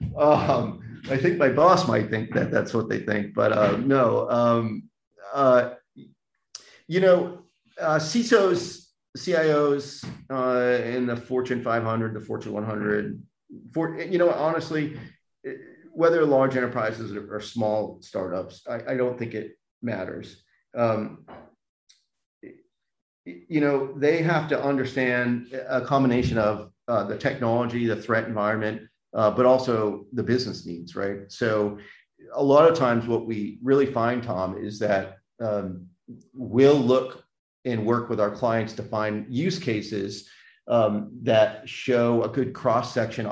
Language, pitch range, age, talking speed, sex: English, 105-135 Hz, 40-59, 135 wpm, male